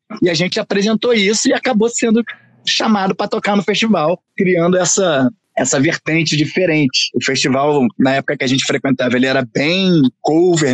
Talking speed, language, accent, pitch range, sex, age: 170 wpm, Portuguese, Brazilian, 135-190 Hz, male, 20-39